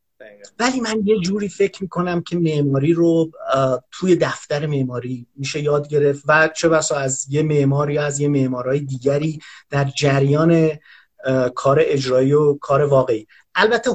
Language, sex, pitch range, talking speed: Persian, male, 145-205 Hz, 140 wpm